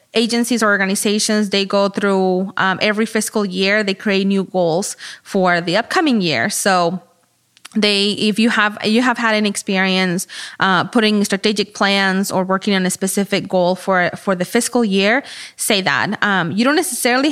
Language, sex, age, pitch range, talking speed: English, female, 20-39, 190-230 Hz, 165 wpm